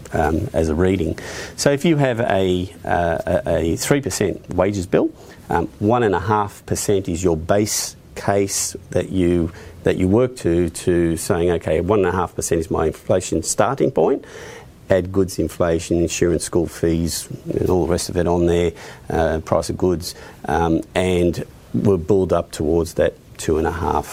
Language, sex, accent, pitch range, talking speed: English, male, Australian, 85-100 Hz, 185 wpm